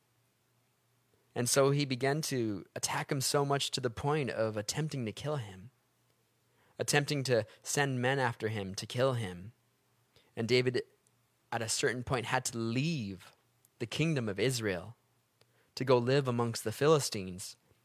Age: 20-39